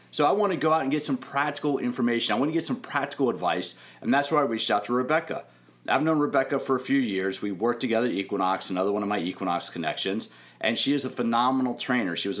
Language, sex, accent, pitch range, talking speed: English, male, American, 110-135 Hz, 250 wpm